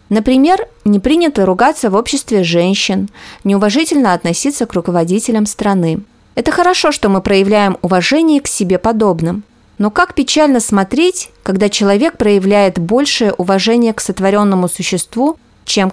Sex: female